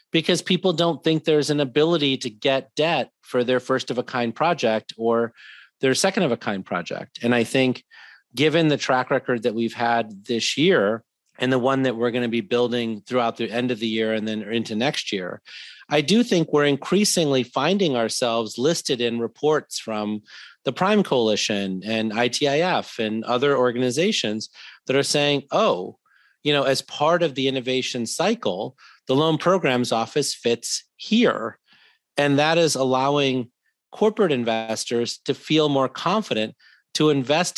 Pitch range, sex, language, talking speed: 115-150 Hz, male, English, 165 wpm